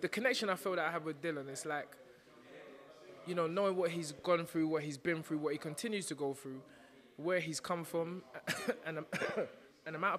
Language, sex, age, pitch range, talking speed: English, male, 20-39, 150-195 Hz, 210 wpm